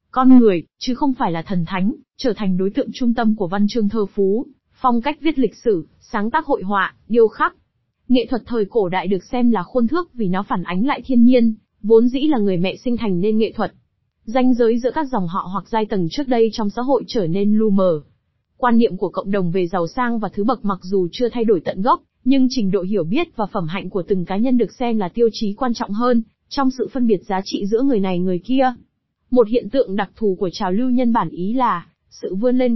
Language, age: Vietnamese, 20-39